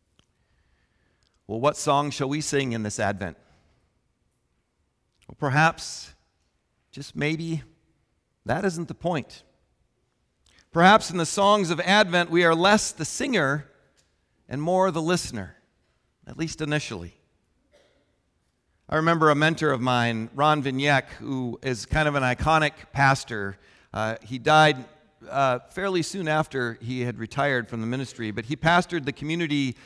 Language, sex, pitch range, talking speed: English, male, 130-170 Hz, 135 wpm